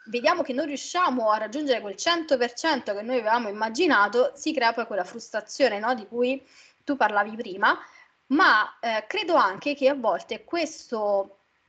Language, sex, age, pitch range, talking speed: Italian, female, 20-39, 220-300 Hz, 155 wpm